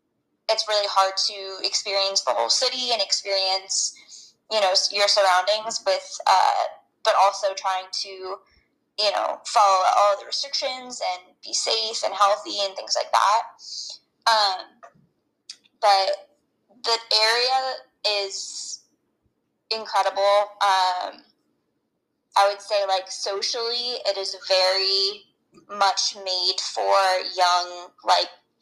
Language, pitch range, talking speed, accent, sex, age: English, 190-220 Hz, 115 wpm, American, female, 20-39